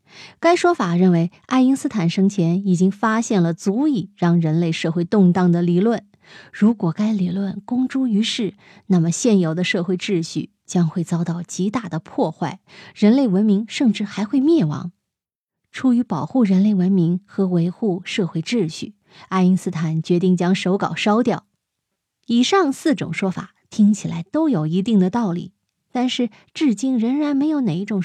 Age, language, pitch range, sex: 20-39, Chinese, 175-220 Hz, female